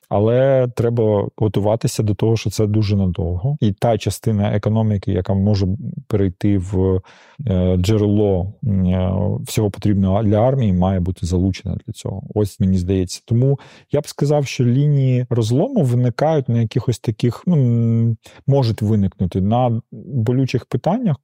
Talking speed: 135 wpm